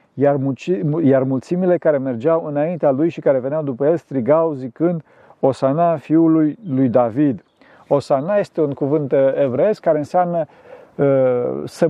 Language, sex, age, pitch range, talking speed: Romanian, male, 50-69, 135-165 Hz, 125 wpm